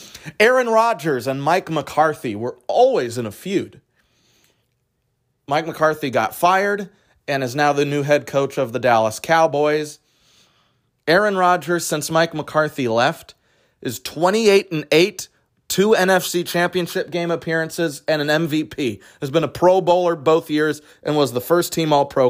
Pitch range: 125-160 Hz